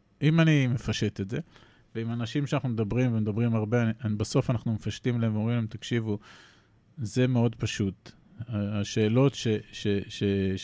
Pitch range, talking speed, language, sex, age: 110-135 Hz, 150 wpm, Hebrew, male, 40-59